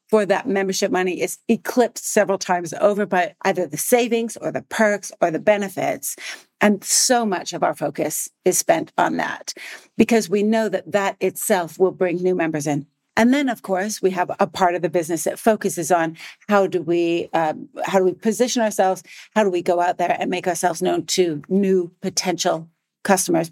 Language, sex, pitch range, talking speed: English, female, 170-205 Hz, 195 wpm